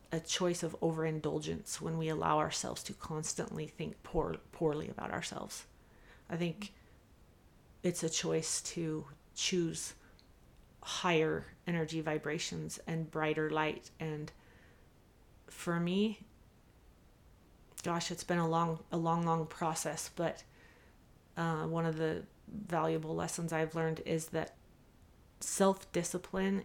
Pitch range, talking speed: 160-175 Hz, 115 wpm